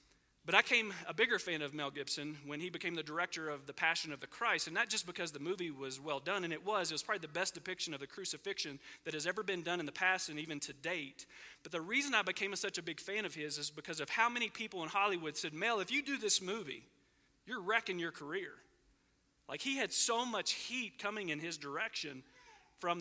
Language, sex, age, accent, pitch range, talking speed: English, male, 40-59, American, 150-205 Hz, 245 wpm